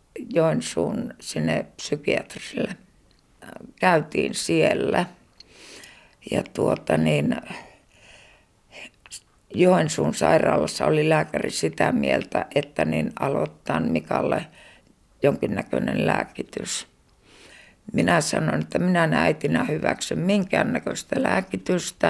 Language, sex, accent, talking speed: Finnish, female, native, 80 wpm